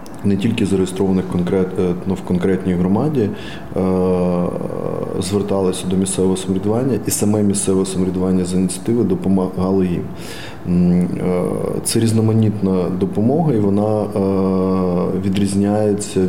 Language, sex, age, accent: Ukrainian, male, 20-39, native